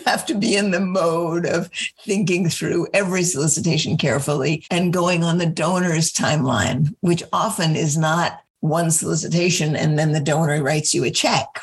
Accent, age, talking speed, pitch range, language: American, 50-69, 165 wpm, 155-195 Hz, English